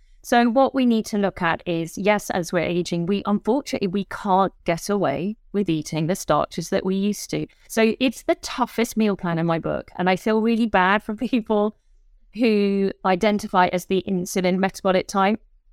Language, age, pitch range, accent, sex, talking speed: English, 30-49, 175-205 Hz, British, female, 185 wpm